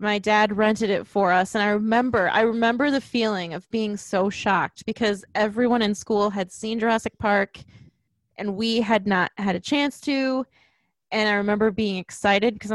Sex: female